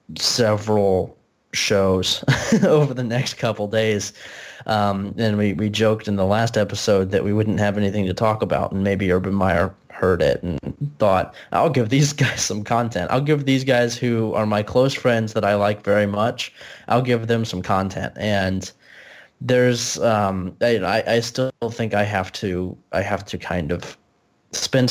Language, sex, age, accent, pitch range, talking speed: English, male, 20-39, American, 95-115 Hz, 175 wpm